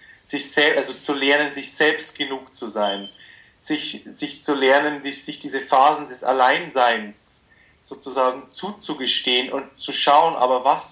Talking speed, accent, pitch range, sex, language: 145 wpm, German, 135-150 Hz, male, German